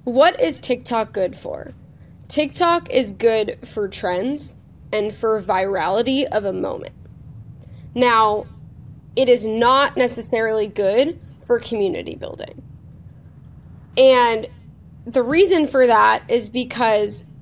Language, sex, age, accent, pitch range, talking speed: English, female, 20-39, American, 215-275 Hz, 110 wpm